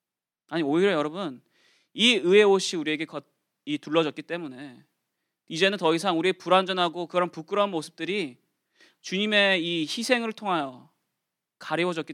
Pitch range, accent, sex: 150-200 Hz, native, male